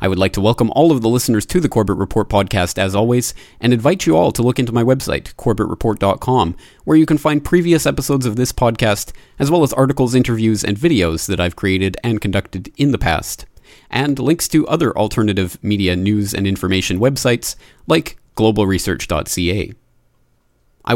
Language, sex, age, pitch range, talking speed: English, male, 30-49, 95-125 Hz, 180 wpm